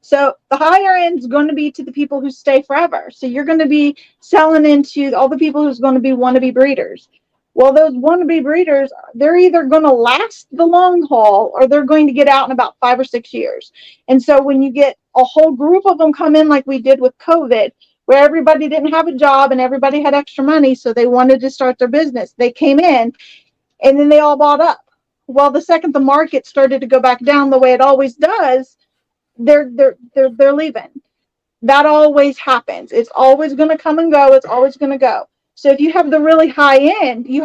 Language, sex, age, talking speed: English, female, 40-59, 230 wpm